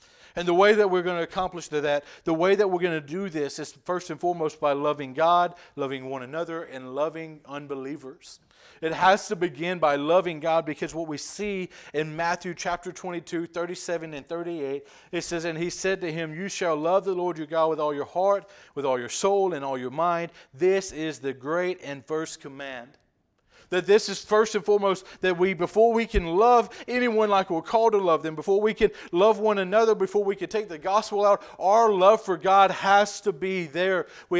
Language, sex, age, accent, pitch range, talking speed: English, male, 40-59, American, 160-195 Hz, 215 wpm